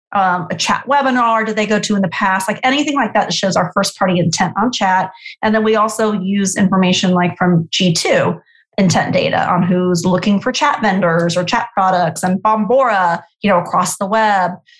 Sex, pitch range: female, 185-225 Hz